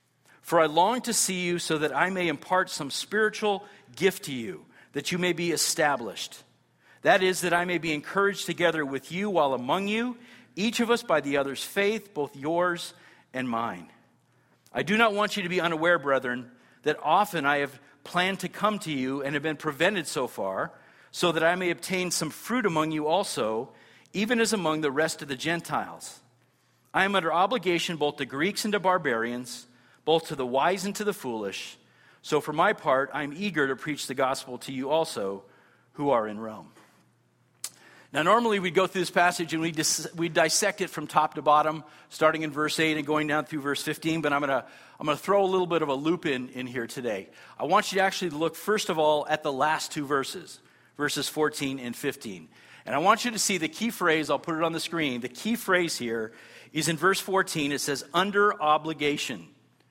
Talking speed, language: 210 wpm, English